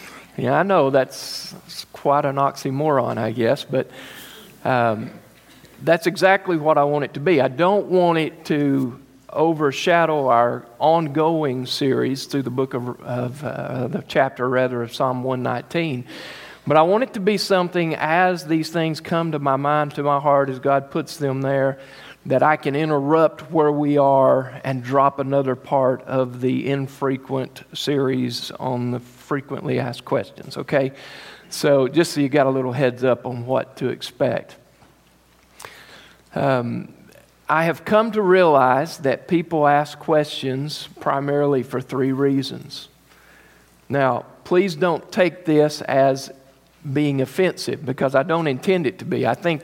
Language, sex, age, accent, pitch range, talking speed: English, male, 50-69, American, 130-160 Hz, 155 wpm